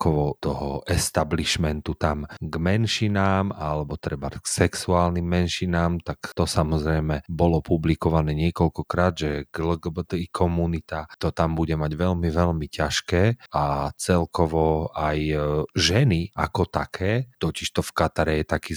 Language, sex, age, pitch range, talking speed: Slovak, male, 30-49, 75-90 Hz, 120 wpm